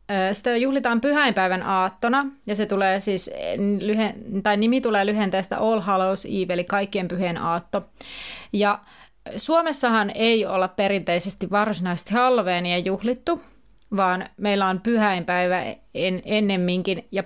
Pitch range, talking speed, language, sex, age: 190-225 Hz, 115 wpm, Finnish, female, 30-49